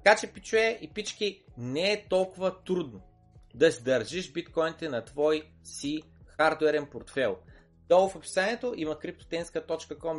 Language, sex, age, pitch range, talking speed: Bulgarian, male, 30-49, 120-185 Hz, 135 wpm